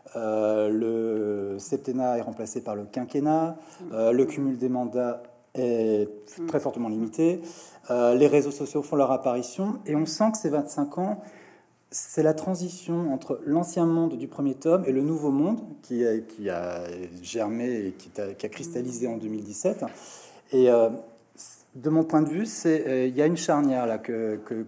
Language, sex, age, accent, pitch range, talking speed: French, male, 40-59, French, 115-150 Hz, 175 wpm